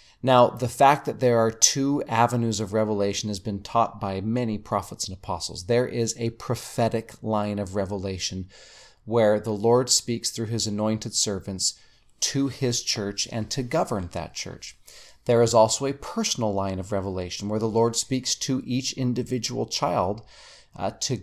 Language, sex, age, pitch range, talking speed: English, male, 40-59, 100-125 Hz, 165 wpm